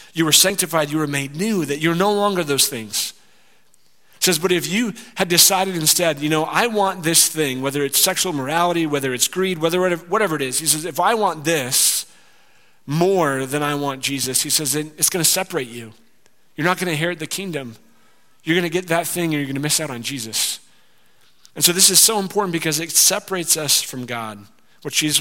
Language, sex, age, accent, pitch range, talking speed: English, male, 40-59, American, 135-175 Hz, 210 wpm